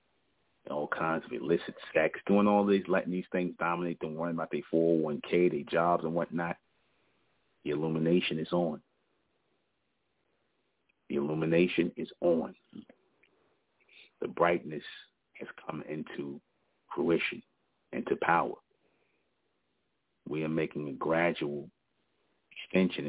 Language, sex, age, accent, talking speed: English, male, 40-59, American, 110 wpm